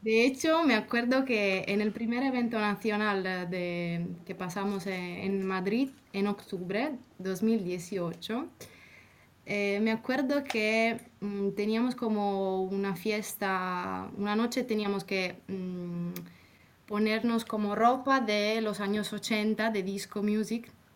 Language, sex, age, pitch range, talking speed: Spanish, female, 20-39, 200-240 Hz, 125 wpm